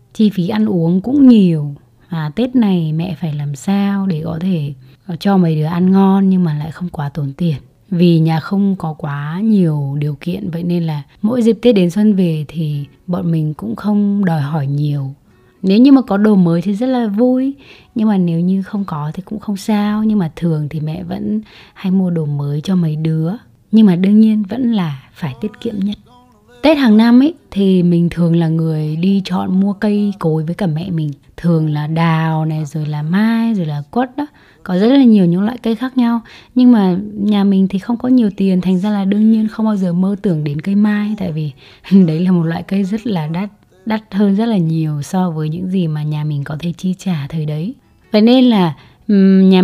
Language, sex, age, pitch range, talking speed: Vietnamese, female, 20-39, 155-210 Hz, 225 wpm